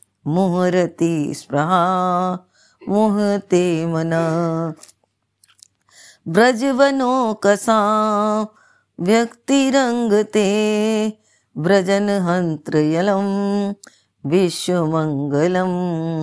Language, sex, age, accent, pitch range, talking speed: Hindi, female, 30-49, native, 165-205 Hz, 35 wpm